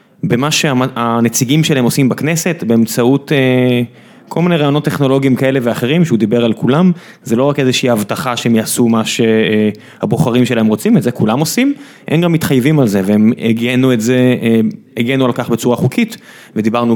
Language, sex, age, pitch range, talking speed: Hebrew, male, 20-39, 120-170 Hz, 165 wpm